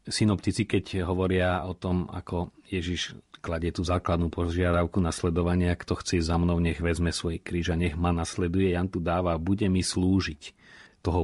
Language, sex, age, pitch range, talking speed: Slovak, male, 40-59, 85-95 Hz, 165 wpm